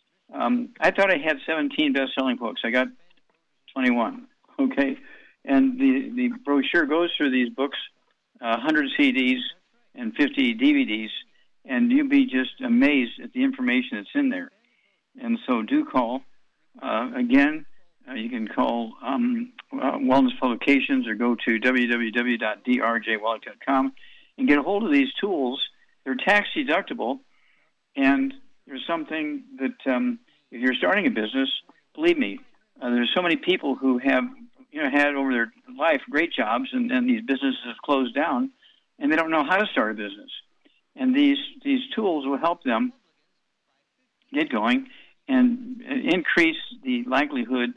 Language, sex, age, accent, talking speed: English, male, 60-79, American, 150 wpm